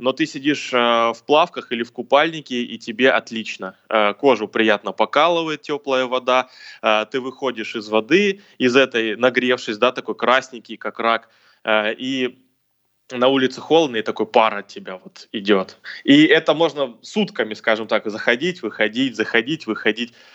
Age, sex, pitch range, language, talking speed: 20-39, male, 115-140 Hz, Russian, 145 wpm